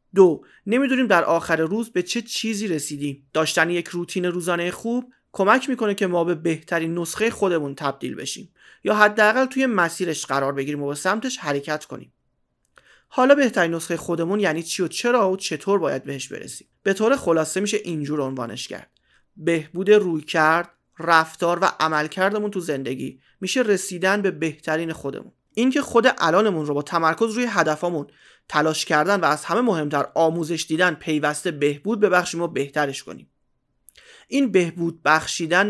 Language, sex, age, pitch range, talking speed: English, male, 30-49, 155-205 Hz, 155 wpm